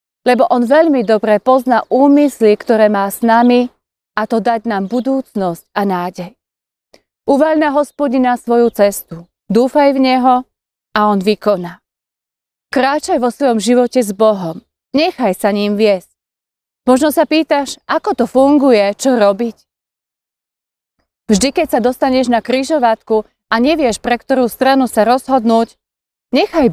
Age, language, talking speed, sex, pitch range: 30-49, Slovak, 130 wpm, female, 210-270 Hz